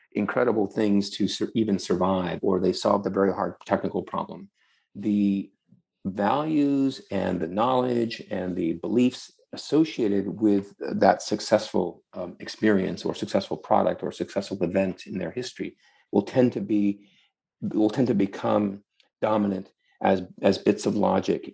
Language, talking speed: English, 140 wpm